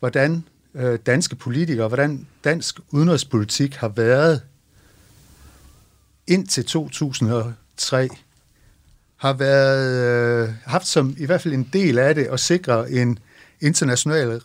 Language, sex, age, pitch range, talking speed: Danish, male, 60-79, 115-150 Hz, 105 wpm